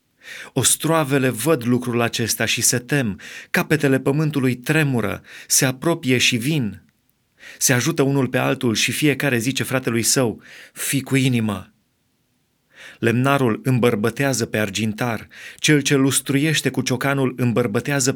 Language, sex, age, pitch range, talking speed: Romanian, male, 30-49, 120-155 Hz, 120 wpm